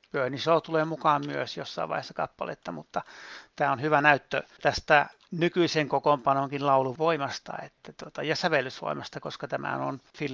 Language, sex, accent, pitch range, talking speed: Finnish, male, native, 130-155 Hz, 140 wpm